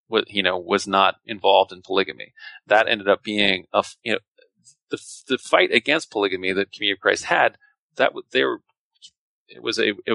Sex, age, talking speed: male, 30-49, 185 wpm